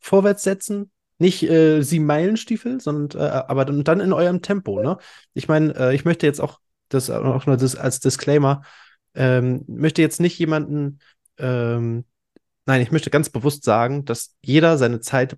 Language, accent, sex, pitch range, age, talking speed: German, German, male, 125-160 Hz, 20-39, 170 wpm